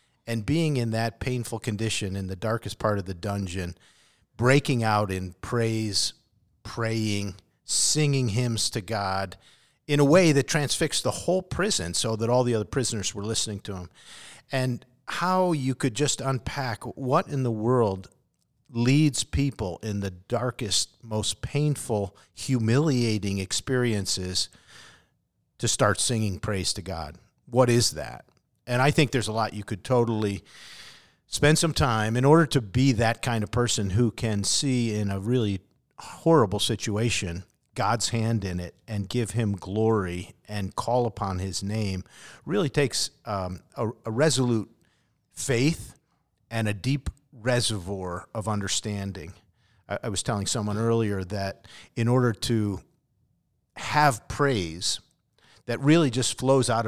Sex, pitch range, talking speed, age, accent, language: male, 100-130 Hz, 145 wpm, 50-69, American, English